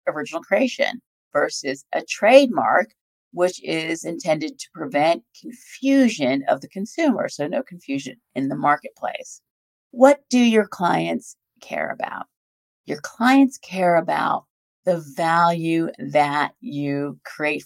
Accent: American